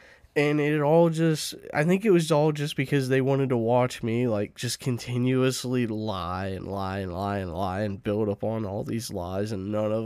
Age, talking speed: 20-39, 210 wpm